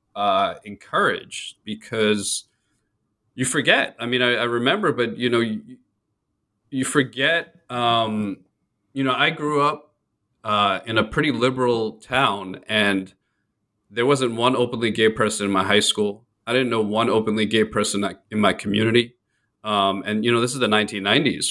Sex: male